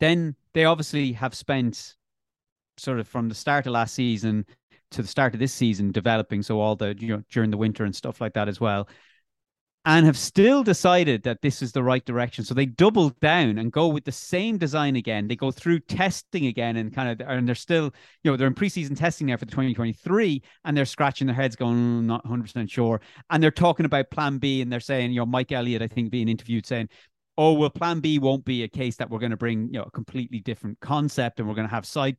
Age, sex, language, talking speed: 30-49, male, English, 240 wpm